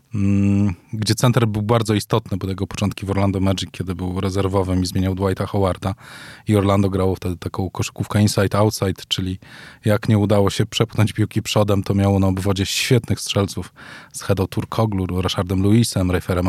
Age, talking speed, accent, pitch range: 20-39, 165 wpm, native, 100-125 Hz